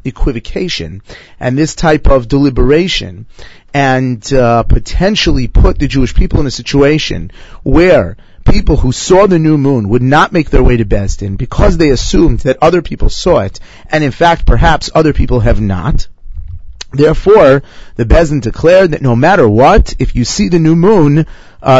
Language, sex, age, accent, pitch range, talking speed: English, male, 30-49, American, 110-155 Hz, 170 wpm